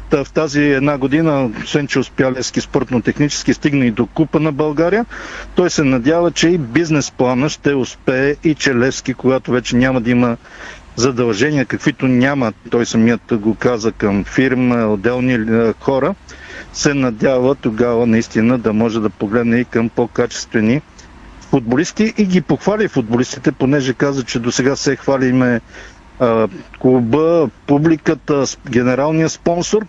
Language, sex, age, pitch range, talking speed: Bulgarian, male, 50-69, 120-150 Hz, 140 wpm